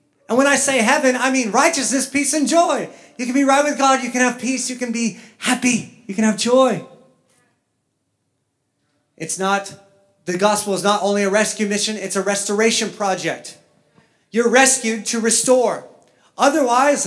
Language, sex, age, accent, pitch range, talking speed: English, male, 30-49, American, 150-240 Hz, 170 wpm